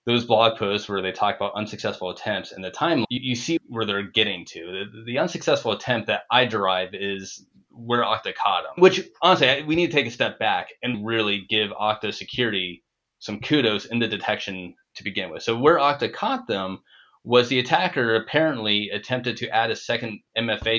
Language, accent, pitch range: English, American, 100-125 Hz